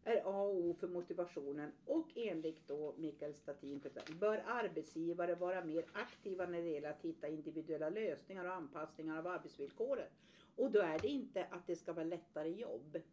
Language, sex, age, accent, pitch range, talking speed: Swedish, female, 50-69, native, 155-210 Hz, 165 wpm